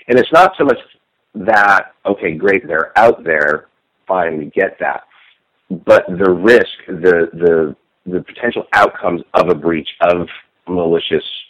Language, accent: English, American